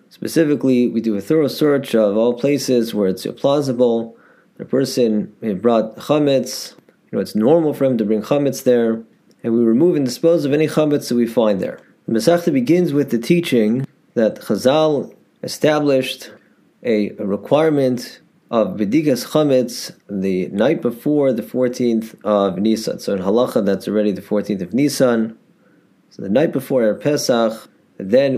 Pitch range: 110-135 Hz